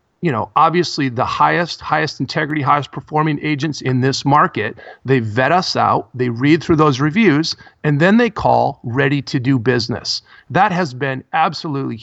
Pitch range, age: 125-160 Hz, 40-59